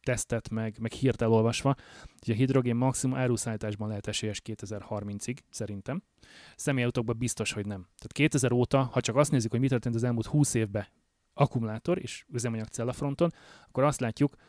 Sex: male